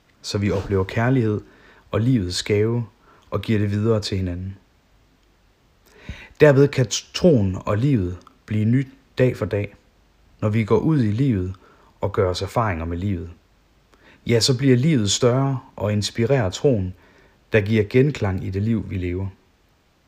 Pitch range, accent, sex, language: 95-120 Hz, native, male, Danish